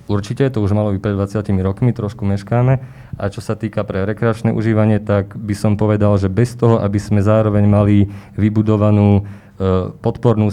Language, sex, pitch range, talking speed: Slovak, male, 100-110 Hz, 165 wpm